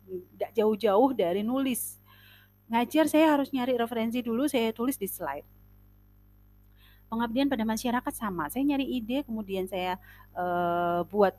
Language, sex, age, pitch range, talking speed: Indonesian, female, 30-49, 165-265 Hz, 130 wpm